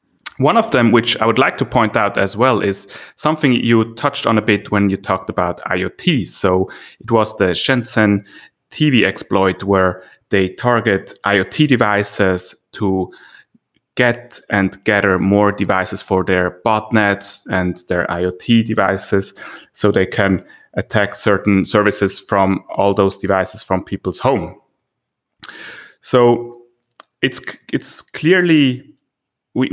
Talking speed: 135 wpm